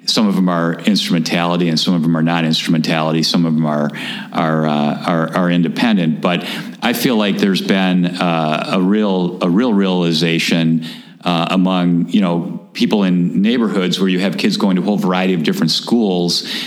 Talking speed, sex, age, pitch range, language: 185 wpm, male, 50-69, 85-95 Hz, English